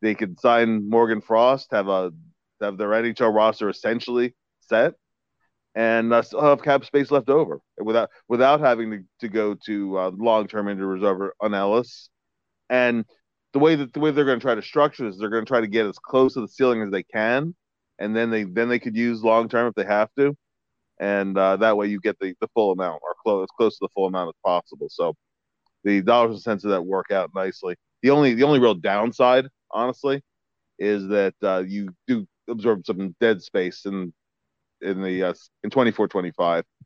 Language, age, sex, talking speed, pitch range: English, 30-49, male, 205 wpm, 100-125 Hz